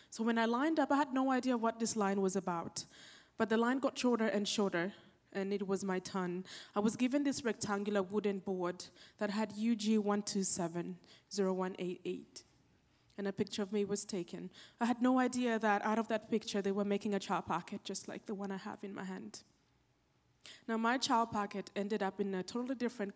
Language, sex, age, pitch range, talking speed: English, female, 20-39, 195-235 Hz, 200 wpm